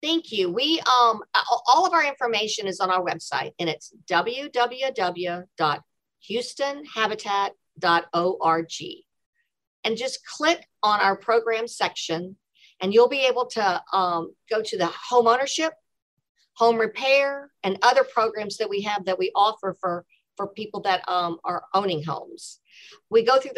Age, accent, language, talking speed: 50-69, American, English, 140 wpm